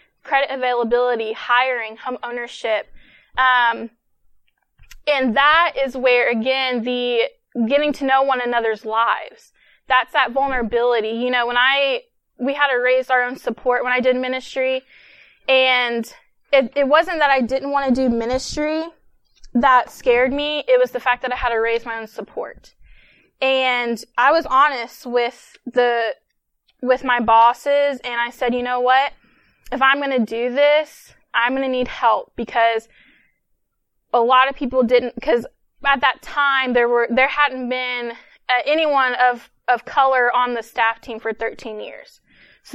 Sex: female